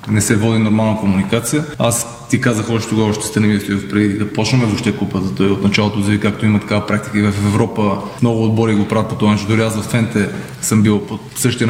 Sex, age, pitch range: male, 20-39, 105-125 Hz